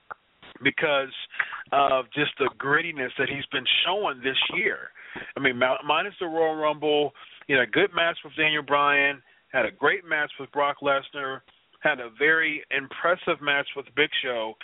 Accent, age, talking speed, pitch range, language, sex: American, 40-59, 160 wpm, 130-155 Hz, English, male